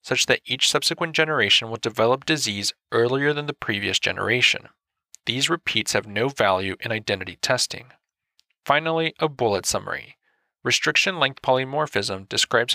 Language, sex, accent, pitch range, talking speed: English, male, American, 110-150 Hz, 130 wpm